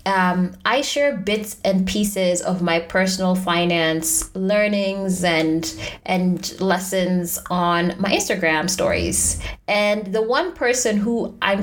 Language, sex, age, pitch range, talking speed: English, female, 20-39, 180-225 Hz, 125 wpm